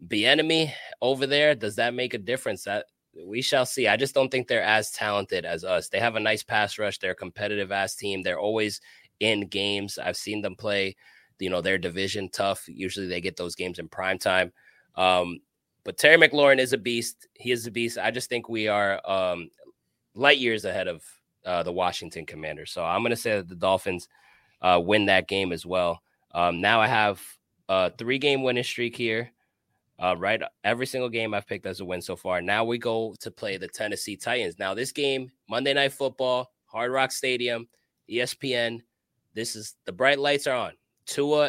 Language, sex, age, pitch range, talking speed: English, male, 20-39, 100-125 Hz, 200 wpm